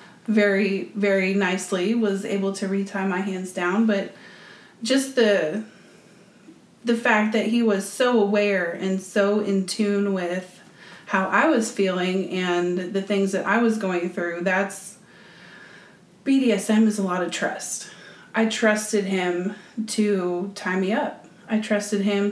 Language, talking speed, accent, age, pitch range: English, 145 wpm, American, 30-49, 195-215 Hz